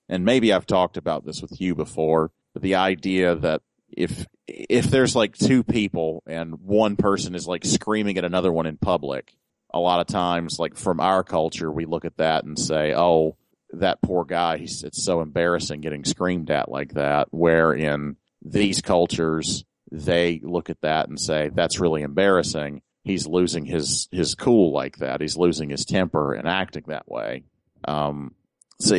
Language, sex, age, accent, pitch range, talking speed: English, male, 40-59, American, 75-90 Hz, 180 wpm